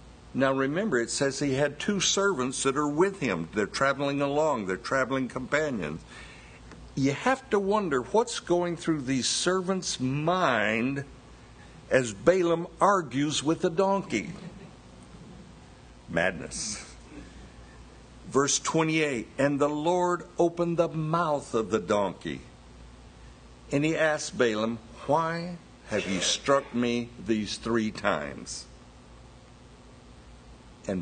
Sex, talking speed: male, 115 wpm